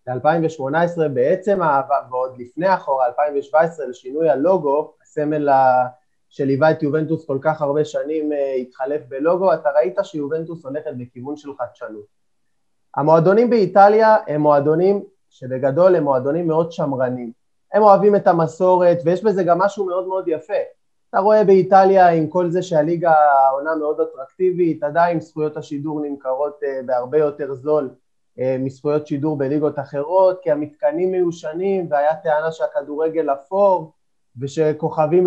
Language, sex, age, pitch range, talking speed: Hebrew, male, 20-39, 145-180 Hz, 125 wpm